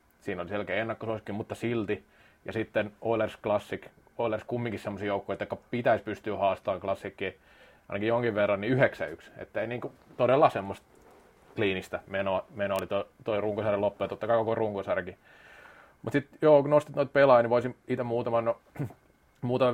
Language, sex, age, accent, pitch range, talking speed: Finnish, male, 30-49, native, 100-120 Hz, 160 wpm